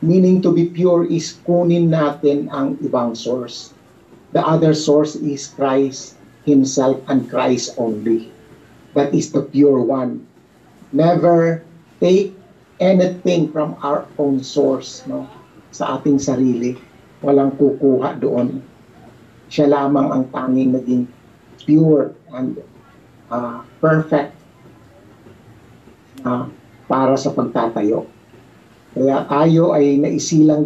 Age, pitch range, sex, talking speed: 50-69, 125-155 Hz, male, 110 wpm